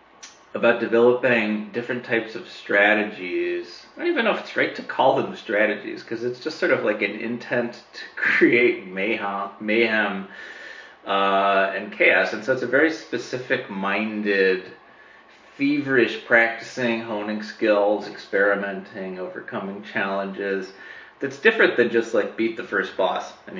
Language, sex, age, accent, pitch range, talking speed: English, male, 30-49, American, 100-135 Hz, 135 wpm